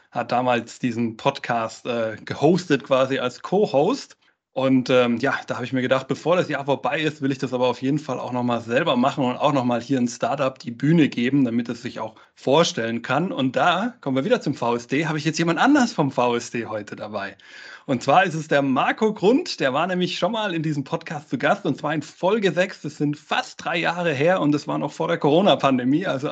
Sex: male